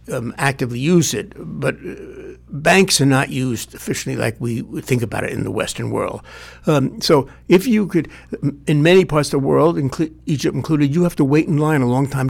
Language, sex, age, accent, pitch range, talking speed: English, male, 60-79, American, 130-160 Hz, 205 wpm